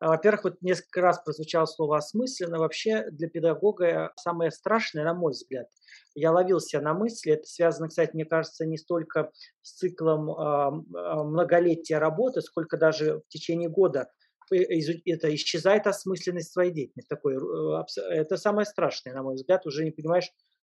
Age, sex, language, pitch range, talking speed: 20-39, male, Russian, 155-200 Hz, 140 wpm